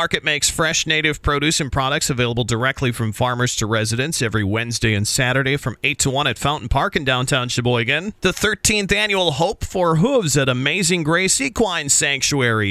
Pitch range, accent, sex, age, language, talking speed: 130-165 Hz, American, male, 40-59, English, 180 wpm